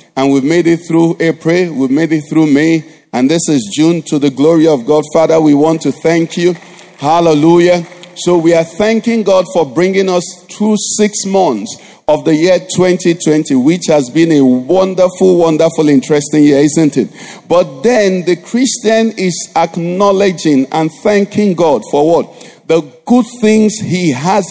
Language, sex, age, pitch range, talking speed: English, male, 50-69, 155-185 Hz, 165 wpm